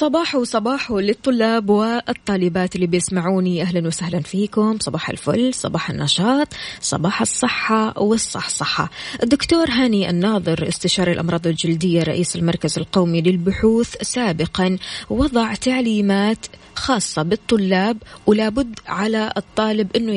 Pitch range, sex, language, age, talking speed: 180-230 Hz, female, Arabic, 20-39, 105 wpm